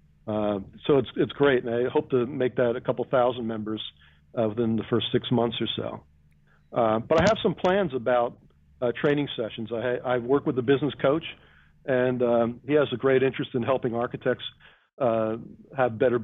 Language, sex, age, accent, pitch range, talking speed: English, male, 50-69, American, 115-145 Hz, 195 wpm